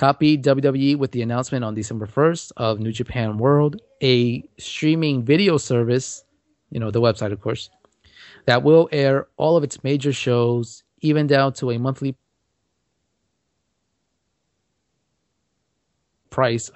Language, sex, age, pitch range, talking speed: English, male, 30-49, 120-145 Hz, 130 wpm